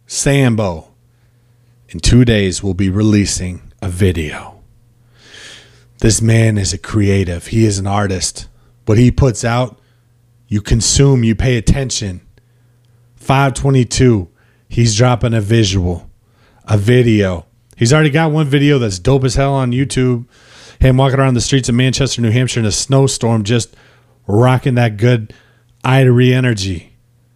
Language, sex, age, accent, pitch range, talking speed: English, male, 30-49, American, 110-130 Hz, 140 wpm